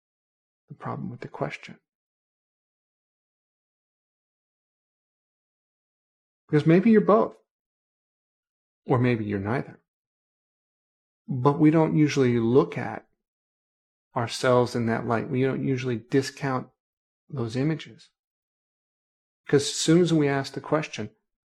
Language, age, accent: English, 40-59, American